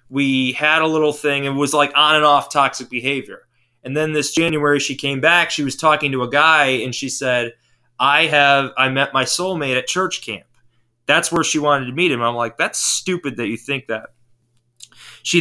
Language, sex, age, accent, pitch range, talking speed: English, male, 20-39, American, 125-150 Hz, 210 wpm